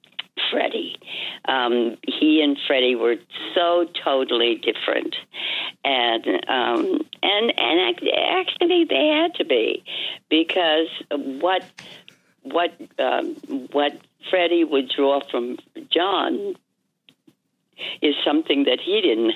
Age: 60-79